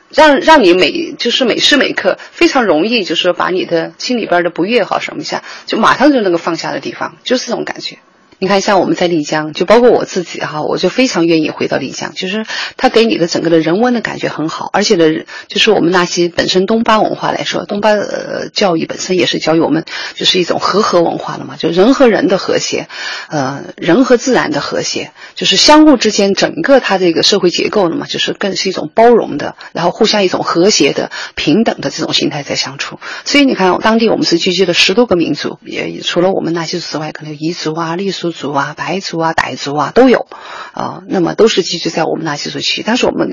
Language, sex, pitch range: Chinese, female, 170-235 Hz